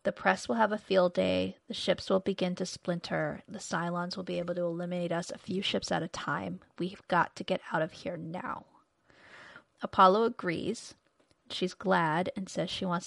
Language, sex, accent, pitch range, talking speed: English, female, American, 180-220 Hz, 195 wpm